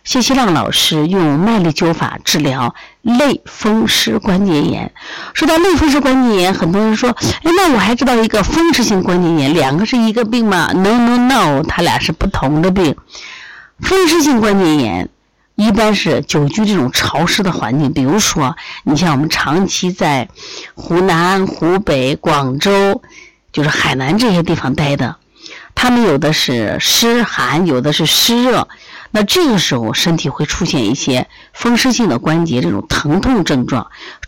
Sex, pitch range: female, 150-235 Hz